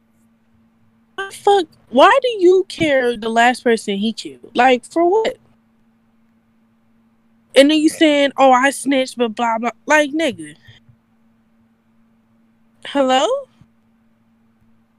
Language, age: English, 20-39